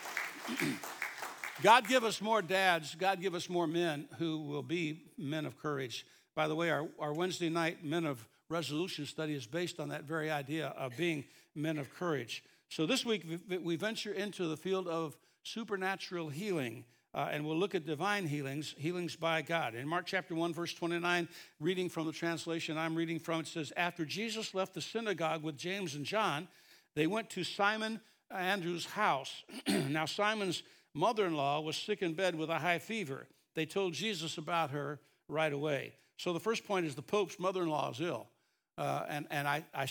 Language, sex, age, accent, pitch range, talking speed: English, male, 60-79, American, 155-185 Hz, 185 wpm